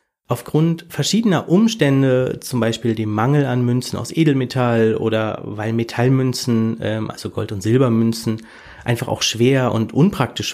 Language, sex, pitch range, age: German, male, 115-155 Hz, 30-49